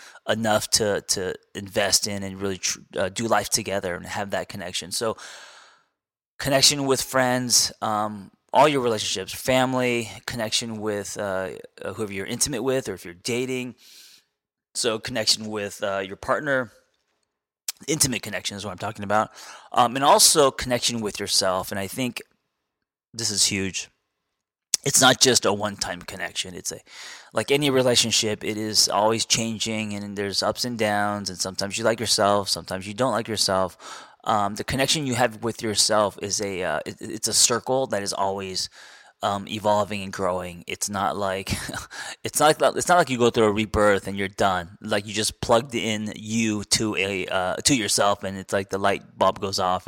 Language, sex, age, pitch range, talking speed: English, male, 20-39, 100-120 Hz, 180 wpm